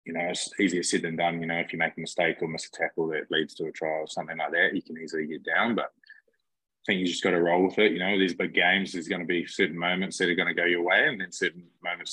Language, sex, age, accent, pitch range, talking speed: English, male, 20-39, Australian, 85-95 Hz, 315 wpm